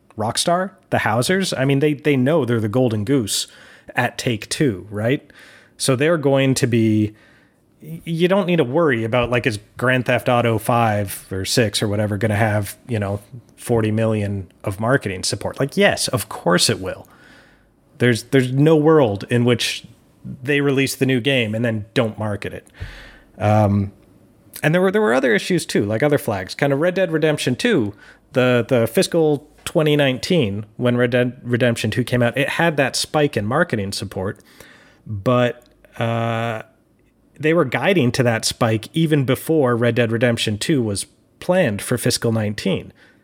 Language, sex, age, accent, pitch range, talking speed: English, male, 30-49, American, 110-140 Hz, 170 wpm